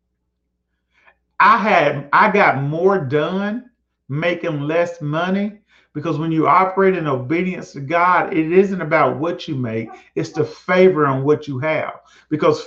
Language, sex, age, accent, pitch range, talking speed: English, male, 40-59, American, 150-195 Hz, 145 wpm